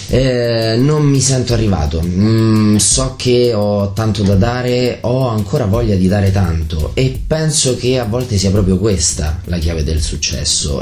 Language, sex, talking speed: Italian, male, 165 wpm